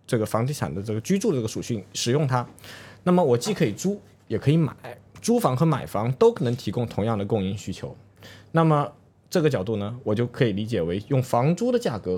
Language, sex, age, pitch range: Chinese, male, 20-39, 110-160 Hz